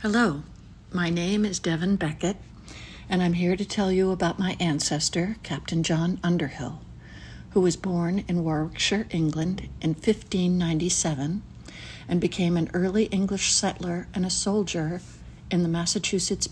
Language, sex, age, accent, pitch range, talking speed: English, female, 60-79, American, 165-195 Hz, 140 wpm